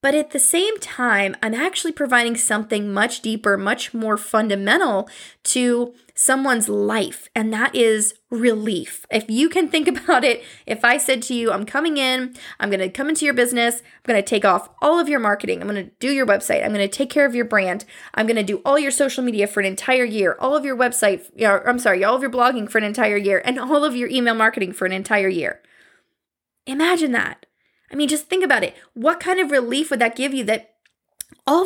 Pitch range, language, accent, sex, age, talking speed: 220-285 Hz, English, American, female, 20-39, 225 wpm